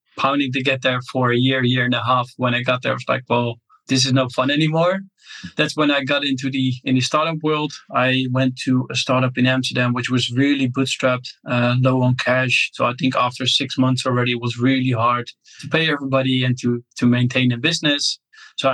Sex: male